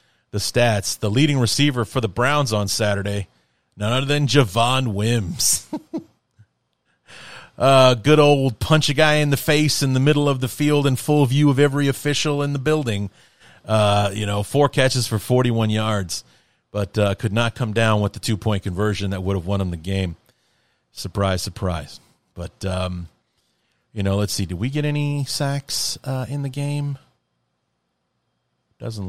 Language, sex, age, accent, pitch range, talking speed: English, male, 40-59, American, 95-125 Hz, 170 wpm